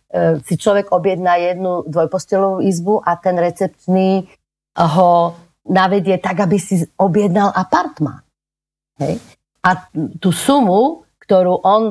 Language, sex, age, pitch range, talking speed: Slovak, female, 40-59, 170-195 Hz, 105 wpm